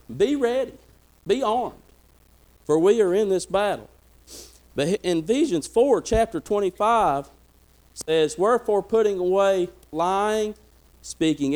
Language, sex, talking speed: English, male, 115 wpm